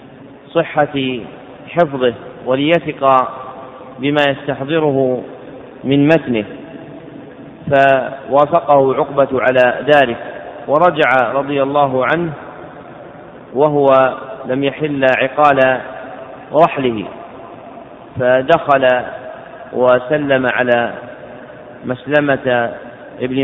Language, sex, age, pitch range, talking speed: Arabic, male, 40-59, 130-150 Hz, 65 wpm